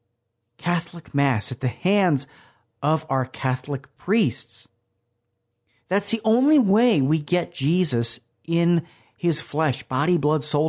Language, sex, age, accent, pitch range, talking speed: English, male, 40-59, American, 115-150 Hz, 125 wpm